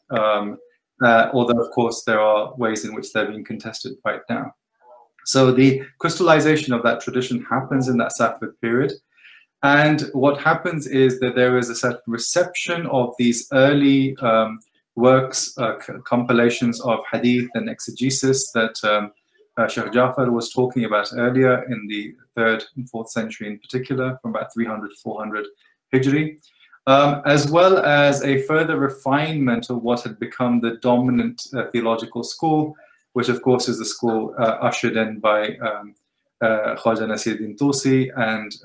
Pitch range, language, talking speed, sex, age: 110-135 Hz, English, 155 wpm, male, 20-39